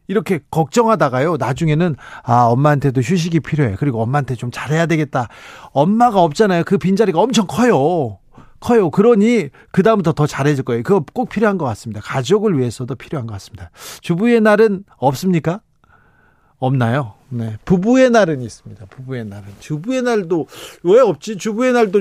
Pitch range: 130-180 Hz